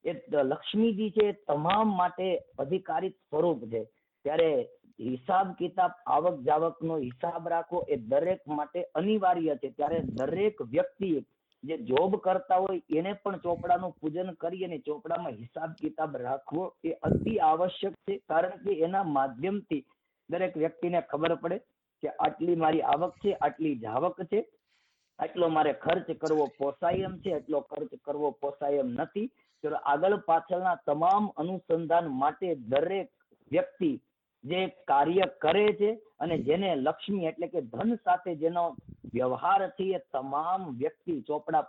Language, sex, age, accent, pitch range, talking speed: Gujarati, female, 50-69, native, 150-195 Hz, 70 wpm